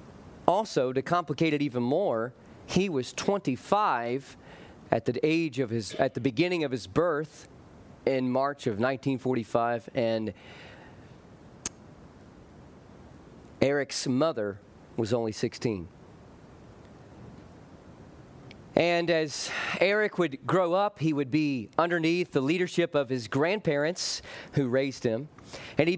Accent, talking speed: American, 115 wpm